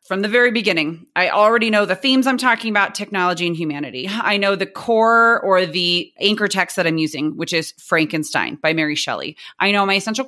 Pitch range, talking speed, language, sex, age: 165-220 Hz, 210 wpm, English, female, 30-49